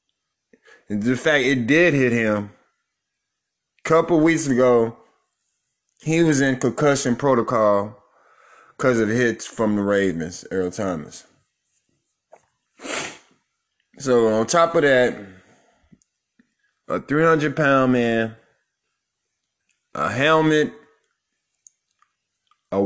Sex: male